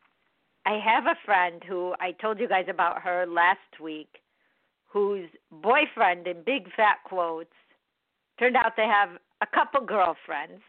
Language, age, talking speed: English, 50-69, 145 wpm